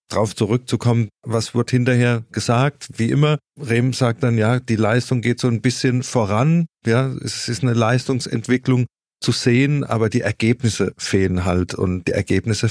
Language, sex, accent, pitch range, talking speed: German, male, German, 105-120 Hz, 160 wpm